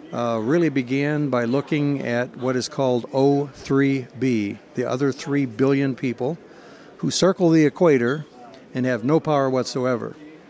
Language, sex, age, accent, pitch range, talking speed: English, male, 60-79, American, 125-155 Hz, 135 wpm